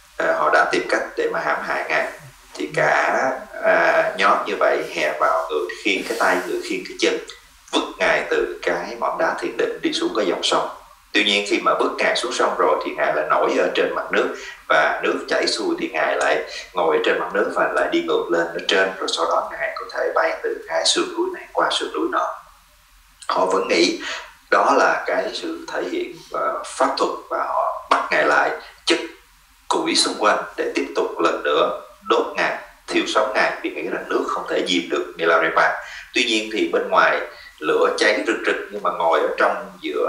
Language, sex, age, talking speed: English, male, 30-49, 220 wpm